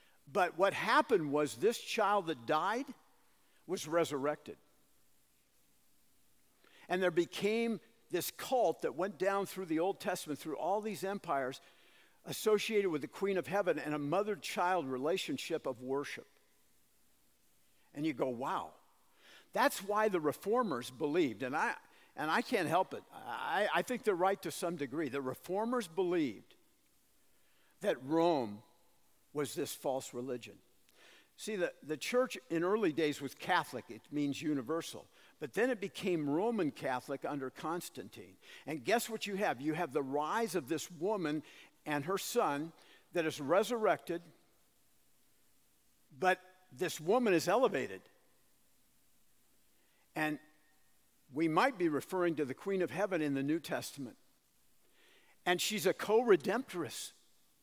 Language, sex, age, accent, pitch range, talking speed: English, male, 50-69, American, 150-205 Hz, 140 wpm